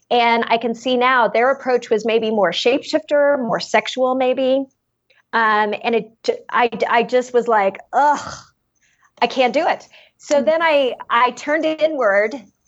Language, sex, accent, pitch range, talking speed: English, female, American, 215-260 Hz, 160 wpm